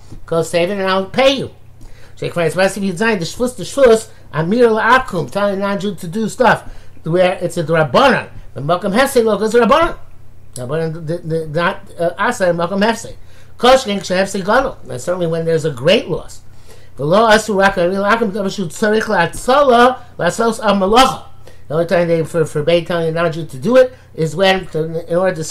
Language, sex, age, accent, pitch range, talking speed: English, male, 50-69, American, 145-195 Hz, 90 wpm